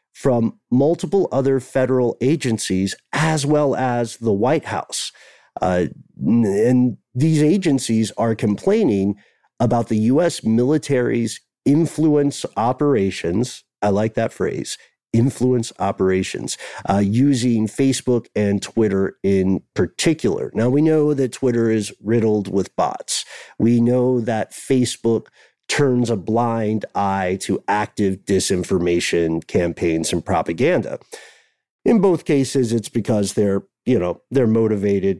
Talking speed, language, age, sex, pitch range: 120 wpm, English, 50-69, male, 100-130 Hz